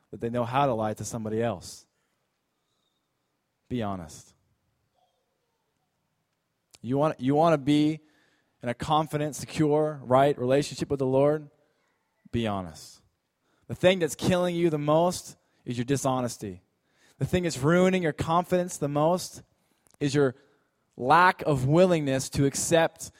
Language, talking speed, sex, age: English, 135 wpm, male, 20-39